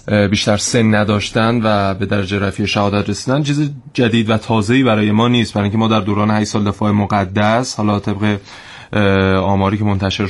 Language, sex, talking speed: Persian, male, 175 wpm